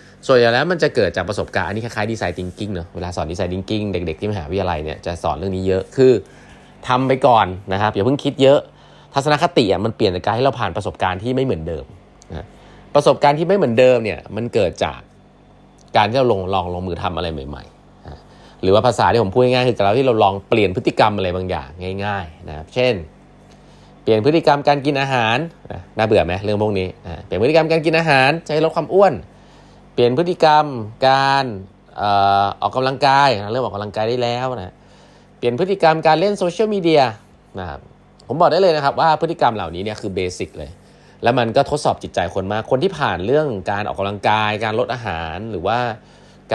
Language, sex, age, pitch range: Thai, male, 20-39, 95-135 Hz